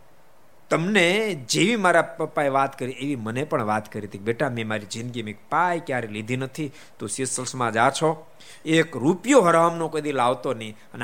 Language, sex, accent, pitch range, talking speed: Gujarati, male, native, 115-160 Hz, 100 wpm